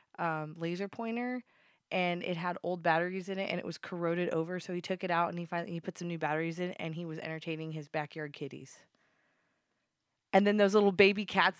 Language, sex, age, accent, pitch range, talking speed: English, female, 20-39, American, 165-195 Hz, 220 wpm